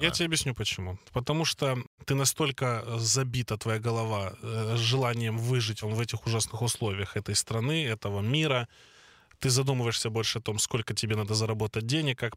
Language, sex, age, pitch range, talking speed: Russian, male, 20-39, 105-125 Hz, 160 wpm